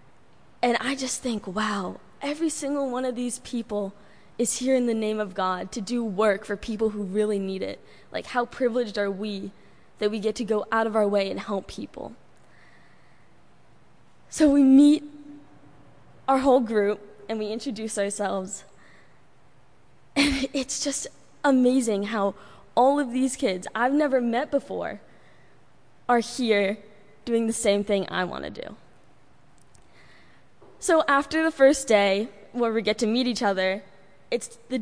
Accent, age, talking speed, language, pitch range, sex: American, 10-29, 155 wpm, English, 200-255 Hz, female